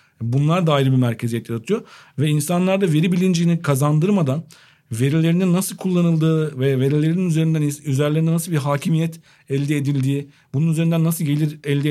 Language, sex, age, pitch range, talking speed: Turkish, male, 50-69, 135-160 Hz, 135 wpm